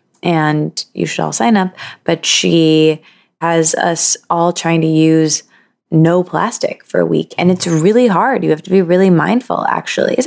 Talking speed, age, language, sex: 180 wpm, 20-39, English, female